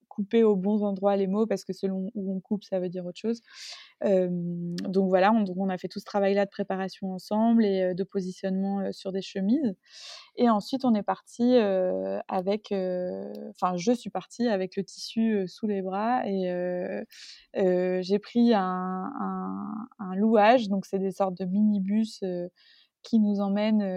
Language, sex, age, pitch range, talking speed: French, female, 20-39, 190-220 Hz, 190 wpm